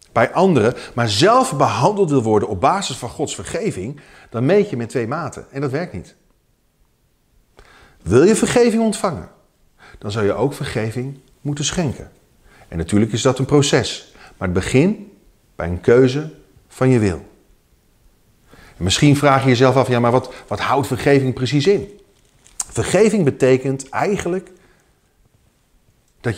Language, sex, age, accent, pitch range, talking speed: Dutch, male, 40-59, Dutch, 105-145 Hz, 150 wpm